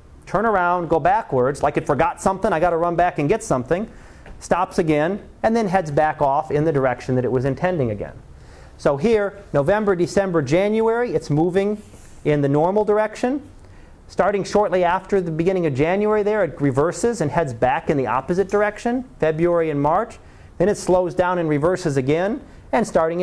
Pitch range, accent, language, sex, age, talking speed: 135-195 Hz, American, English, male, 40-59, 180 wpm